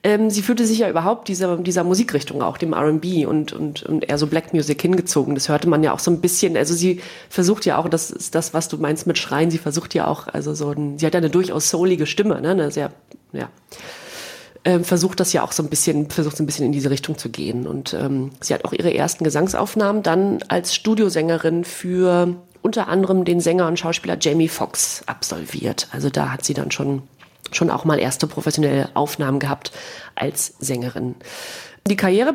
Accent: German